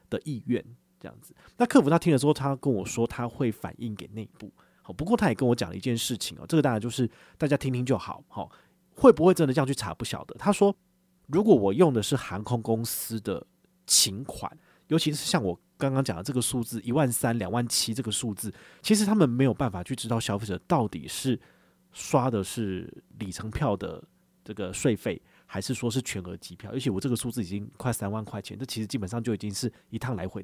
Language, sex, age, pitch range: Chinese, male, 30-49, 105-145 Hz